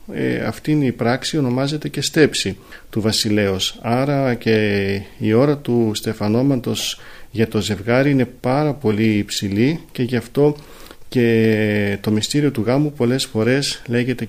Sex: male